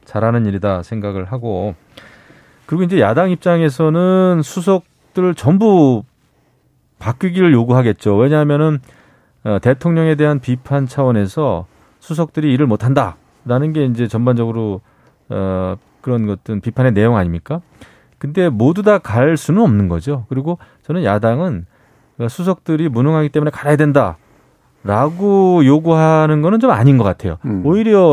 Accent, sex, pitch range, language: native, male, 110-155 Hz, Korean